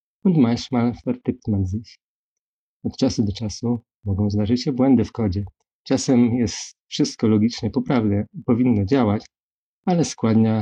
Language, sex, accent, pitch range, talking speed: Polish, male, native, 105-125 Hz, 135 wpm